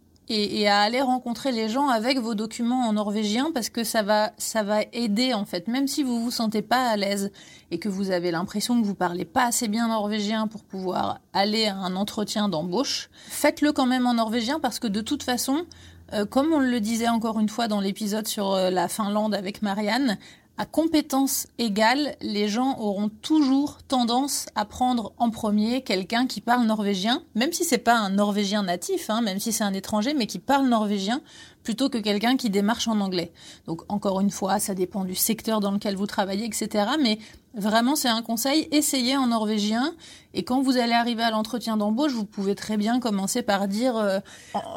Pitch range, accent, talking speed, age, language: 205-245 Hz, French, 200 wpm, 30-49, French